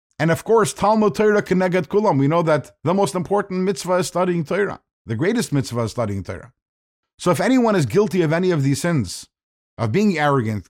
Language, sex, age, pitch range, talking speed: English, male, 50-69, 115-165 Hz, 190 wpm